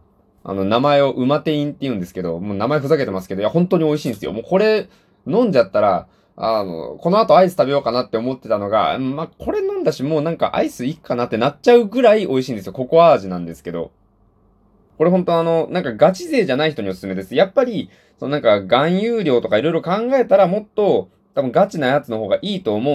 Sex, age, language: male, 20-39, Japanese